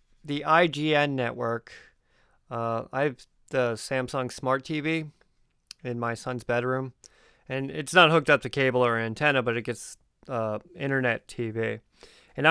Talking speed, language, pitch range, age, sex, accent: 140 wpm, English, 125-155 Hz, 30-49, male, American